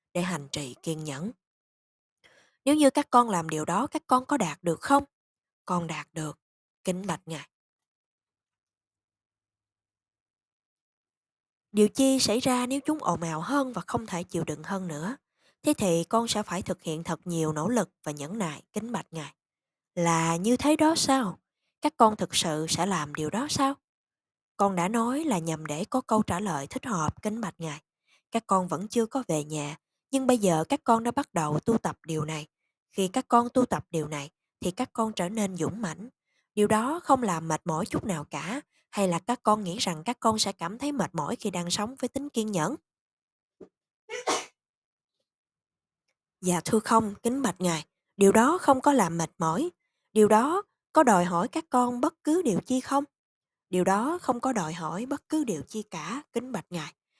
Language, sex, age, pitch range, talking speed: Vietnamese, female, 20-39, 165-255 Hz, 195 wpm